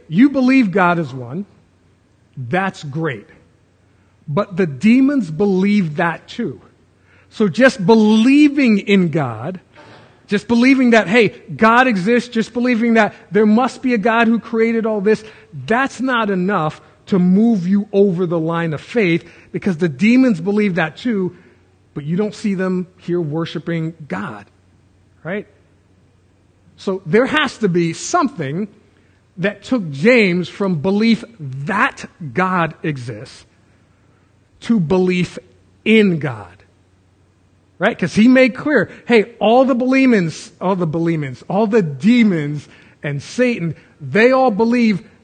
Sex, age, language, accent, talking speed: male, 40-59, English, American, 135 wpm